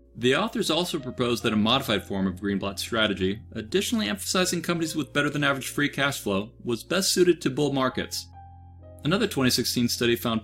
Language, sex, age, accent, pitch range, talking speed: English, male, 40-59, American, 110-150 Hz, 165 wpm